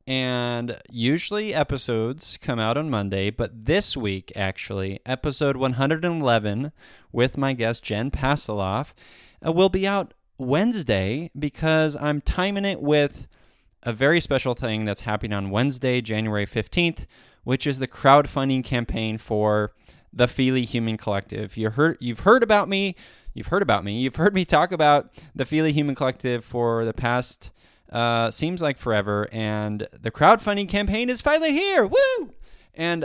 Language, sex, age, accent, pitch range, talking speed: English, male, 20-39, American, 110-155 Hz, 150 wpm